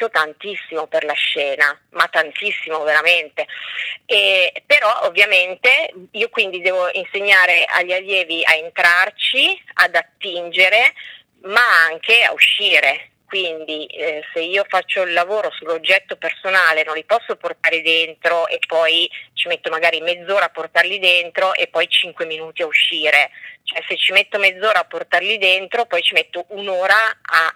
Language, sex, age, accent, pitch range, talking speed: Italian, female, 30-49, native, 165-215 Hz, 145 wpm